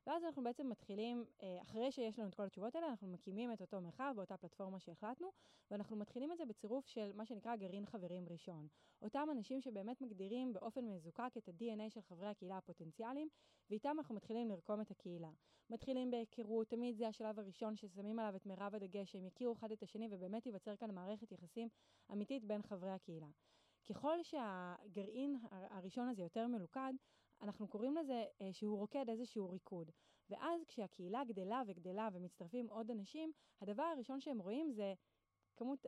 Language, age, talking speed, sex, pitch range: Hebrew, 20-39, 155 wpm, female, 195-245 Hz